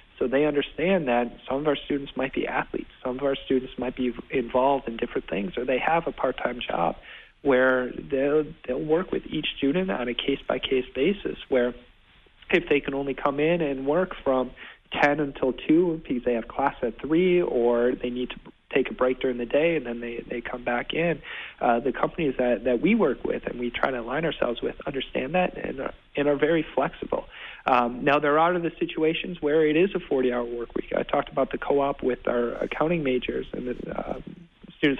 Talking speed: 215 wpm